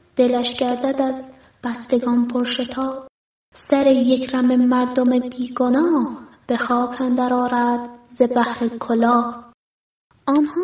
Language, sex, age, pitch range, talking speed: Persian, female, 20-39, 240-270 Hz, 90 wpm